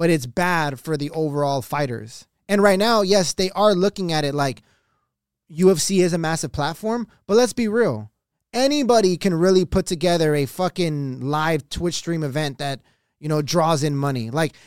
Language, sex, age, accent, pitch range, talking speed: English, male, 20-39, American, 150-190 Hz, 180 wpm